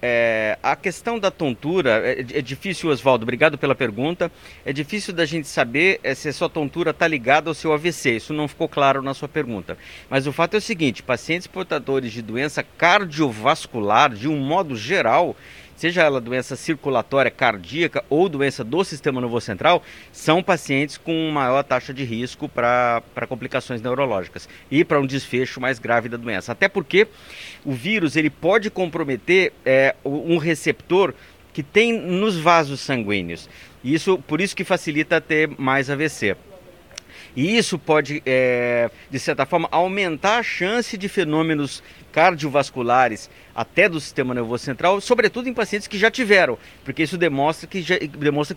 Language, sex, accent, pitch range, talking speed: Portuguese, male, Brazilian, 130-175 Hz, 155 wpm